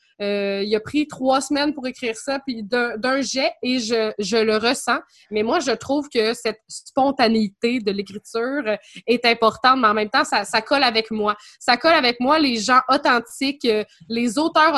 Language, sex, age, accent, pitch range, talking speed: French, female, 20-39, Canadian, 220-275 Hz, 190 wpm